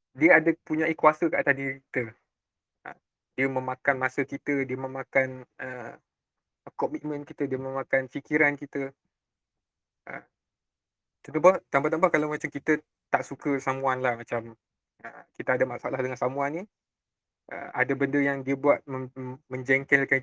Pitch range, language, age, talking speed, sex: 130-150 Hz, Malay, 20-39, 135 wpm, male